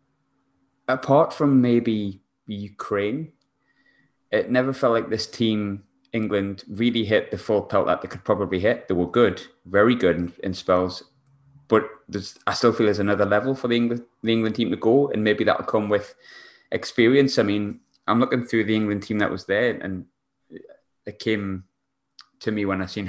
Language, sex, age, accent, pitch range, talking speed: English, male, 20-39, British, 95-110 Hz, 180 wpm